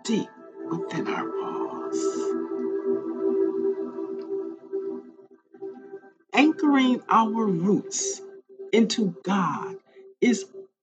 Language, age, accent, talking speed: English, 50-69, American, 55 wpm